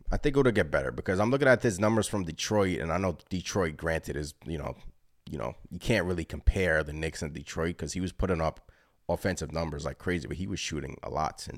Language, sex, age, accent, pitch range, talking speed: English, male, 30-49, American, 75-100 Hz, 250 wpm